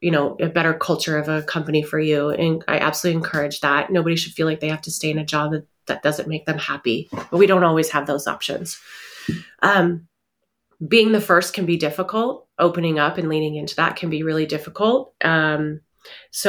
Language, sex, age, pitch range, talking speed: English, female, 30-49, 155-185 Hz, 210 wpm